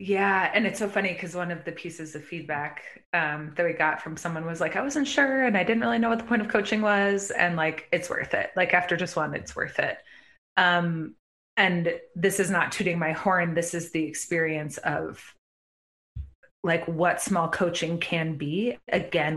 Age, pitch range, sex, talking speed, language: 20-39, 160-190 Hz, female, 205 wpm, English